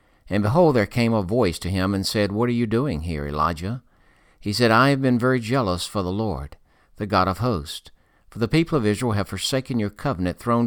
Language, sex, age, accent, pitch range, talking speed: English, male, 60-79, American, 90-115 Hz, 225 wpm